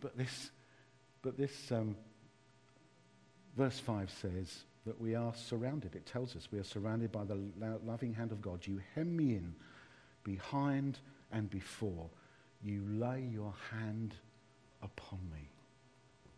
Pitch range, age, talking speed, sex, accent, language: 110-135 Hz, 50-69, 140 wpm, male, British, English